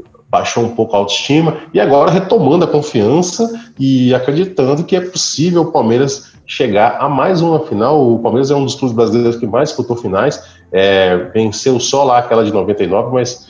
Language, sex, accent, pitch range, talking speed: Portuguese, male, Brazilian, 115-155 Hz, 180 wpm